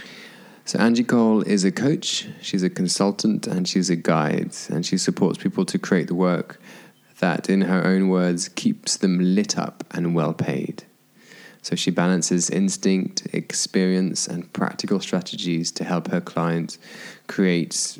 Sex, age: male, 20-39